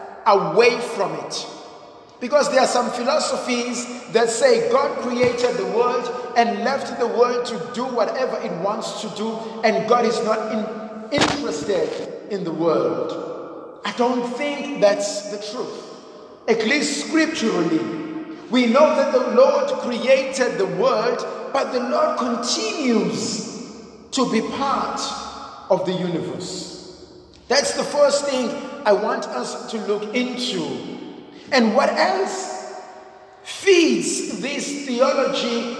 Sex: male